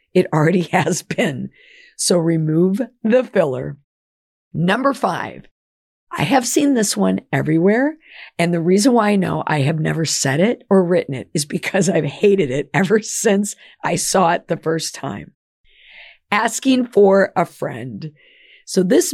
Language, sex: English, female